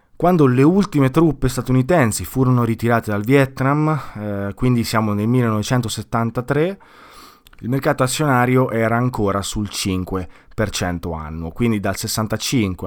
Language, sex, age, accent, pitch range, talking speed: Italian, male, 20-39, native, 95-125 Hz, 115 wpm